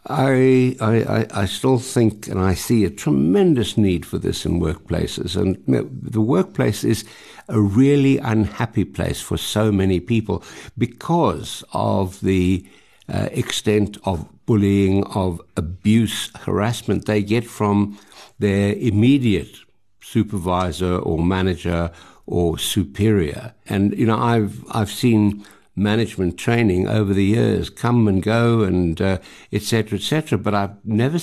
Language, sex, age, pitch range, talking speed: English, male, 60-79, 95-115 Hz, 135 wpm